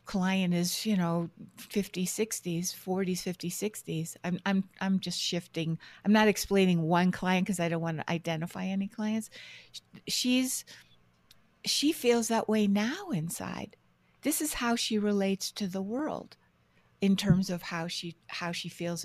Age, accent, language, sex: 60-79, American, English, female